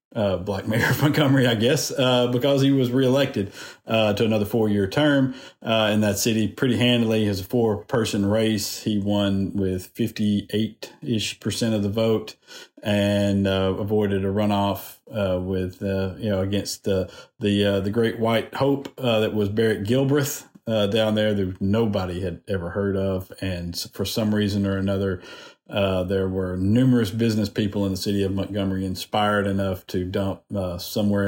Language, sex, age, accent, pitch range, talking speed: English, male, 50-69, American, 95-110 Hz, 180 wpm